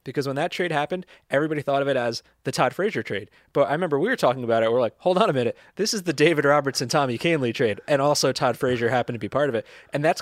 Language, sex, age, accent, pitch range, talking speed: English, male, 20-39, American, 120-160 Hz, 280 wpm